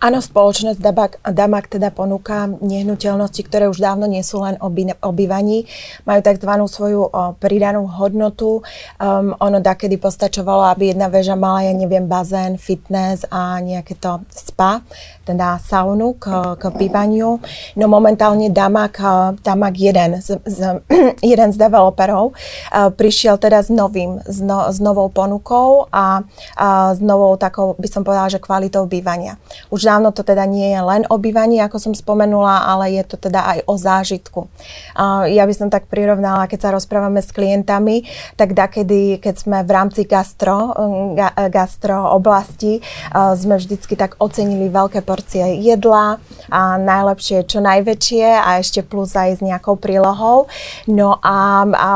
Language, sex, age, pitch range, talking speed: Slovak, female, 30-49, 190-205 Hz, 150 wpm